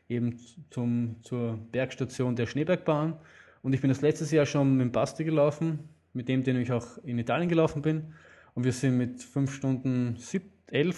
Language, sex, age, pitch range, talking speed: German, male, 20-39, 125-155 Hz, 180 wpm